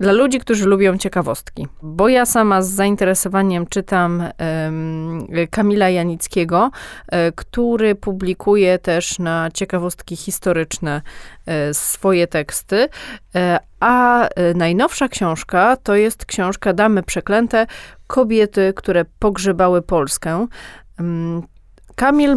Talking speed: 90 wpm